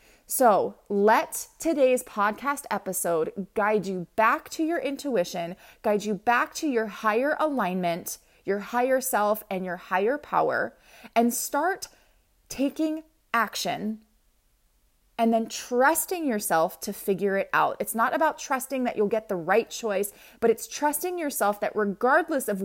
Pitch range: 195-270 Hz